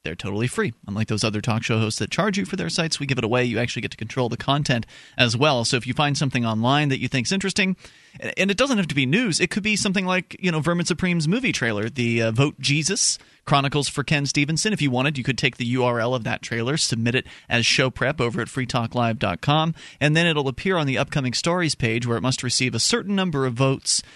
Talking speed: 250 wpm